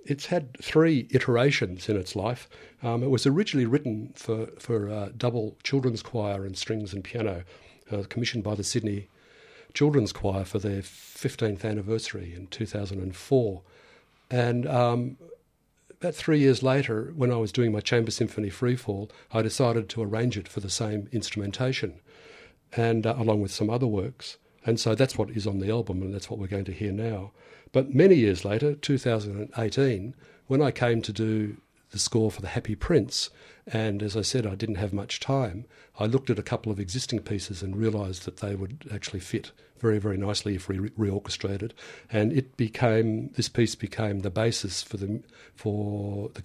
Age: 50-69